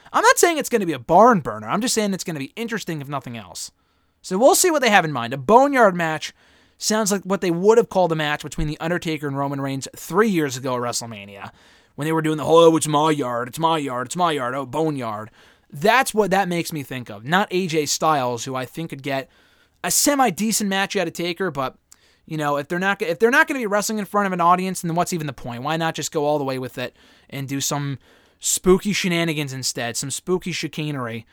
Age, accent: 20-39, American